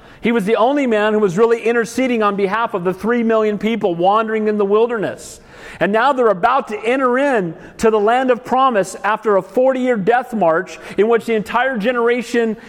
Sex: male